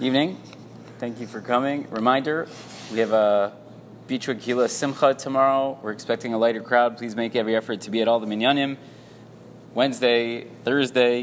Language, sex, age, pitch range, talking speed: English, male, 20-39, 120-145 Hz, 160 wpm